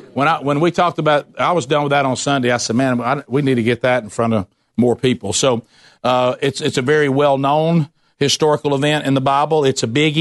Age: 50-69